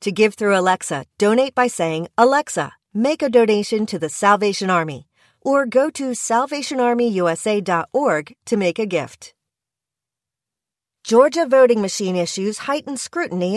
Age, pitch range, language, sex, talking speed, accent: 40-59, 180-250 Hz, English, female, 130 wpm, American